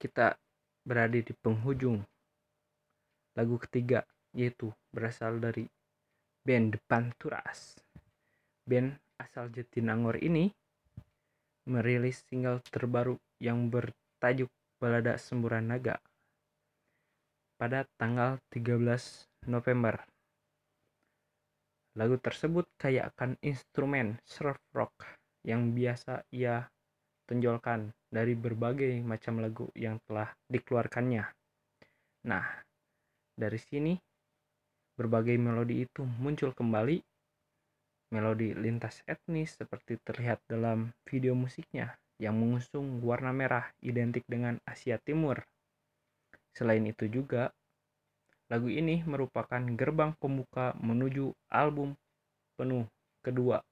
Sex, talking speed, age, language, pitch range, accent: male, 90 wpm, 20-39, Indonesian, 115-140 Hz, native